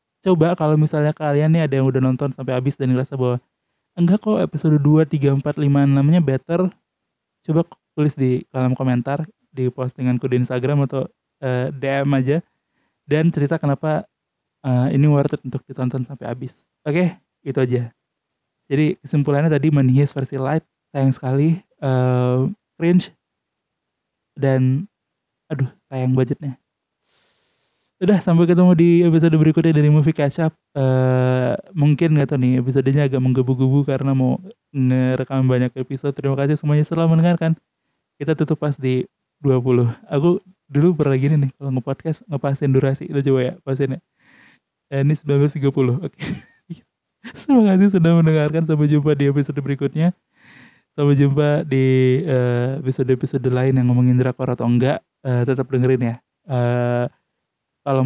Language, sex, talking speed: Indonesian, male, 145 wpm